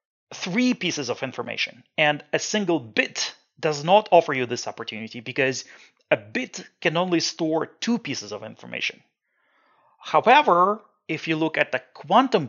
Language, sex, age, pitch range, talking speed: English, male, 30-49, 135-170 Hz, 150 wpm